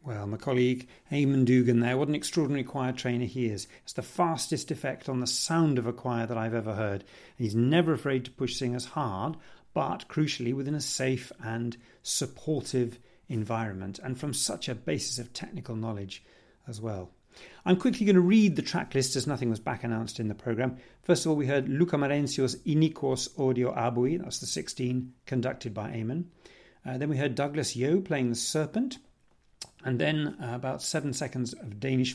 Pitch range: 120-155 Hz